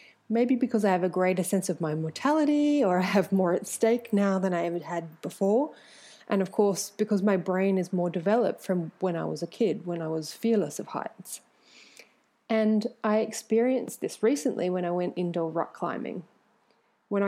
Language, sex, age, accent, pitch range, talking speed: English, female, 30-49, Australian, 180-225 Hz, 190 wpm